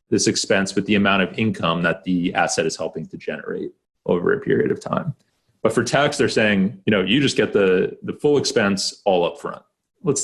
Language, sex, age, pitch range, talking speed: English, male, 30-49, 95-130 Hz, 215 wpm